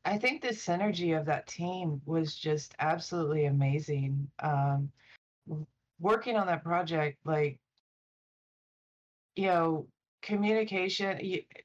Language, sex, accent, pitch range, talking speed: English, female, American, 145-185 Hz, 105 wpm